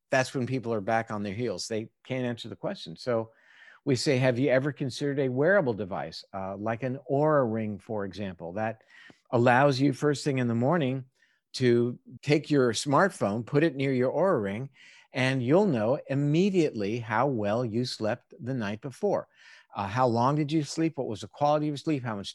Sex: male